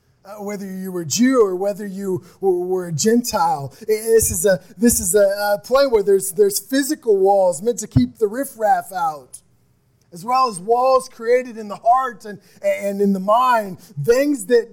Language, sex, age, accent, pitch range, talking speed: English, male, 20-39, American, 185-240 Hz, 190 wpm